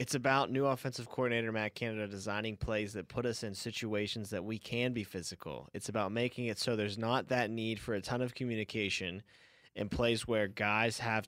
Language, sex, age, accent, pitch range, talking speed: English, male, 20-39, American, 95-115 Hz, 200 wpm